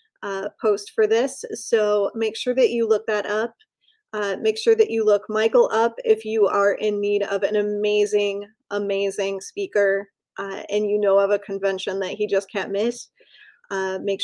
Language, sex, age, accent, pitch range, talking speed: English, female, 20-39, American, 200-230 Hz, 185 wpm